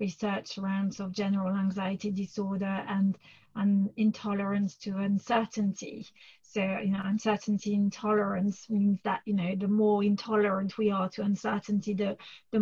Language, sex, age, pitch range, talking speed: English, female, 30-49, 200-220 Hz, 140 wpm